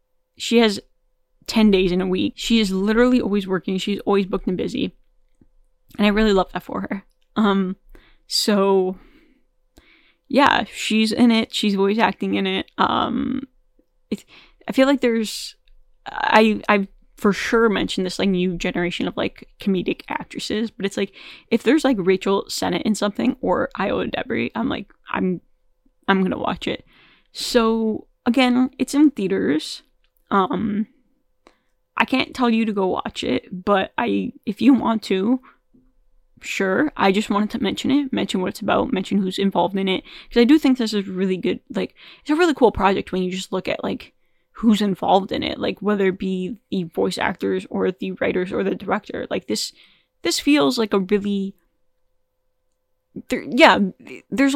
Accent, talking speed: American, 170 wpm